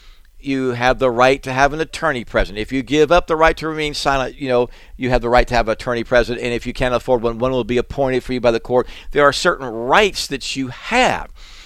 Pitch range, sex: 115-150 Hz, male